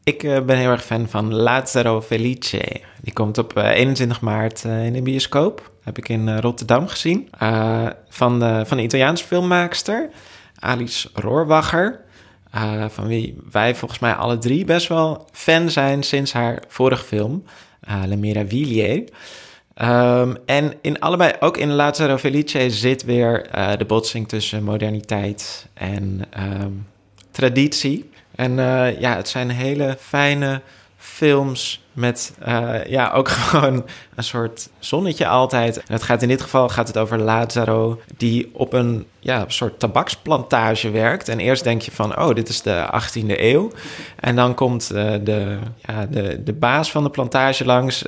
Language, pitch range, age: Dutch, 110-130 Hz, 20-39